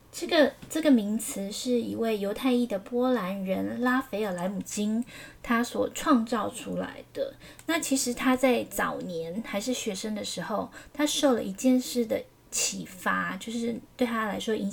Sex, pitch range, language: female, 200-255 Hz, Chinese